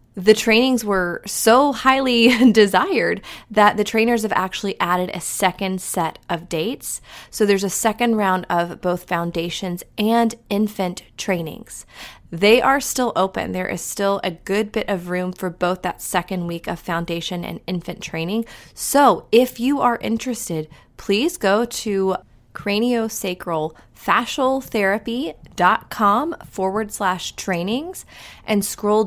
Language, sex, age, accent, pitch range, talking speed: English, female, 20-39, American, 170-220 Hz, 135 wpm